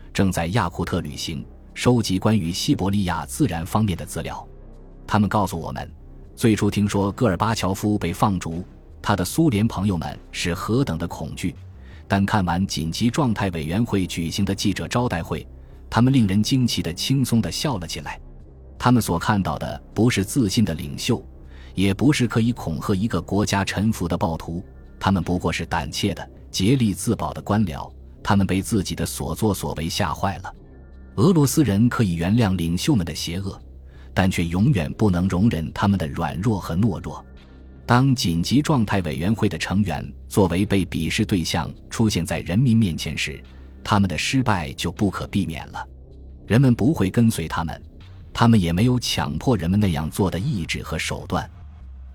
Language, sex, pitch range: Chinese, male, 80-110 Hz